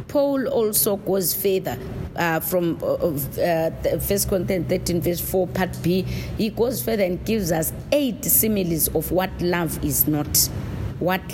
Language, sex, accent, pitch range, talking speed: English, female, South African, 155-195 Hz, 155 wpm